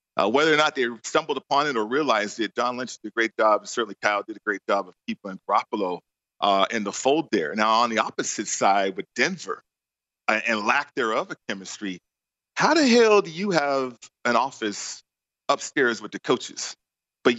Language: English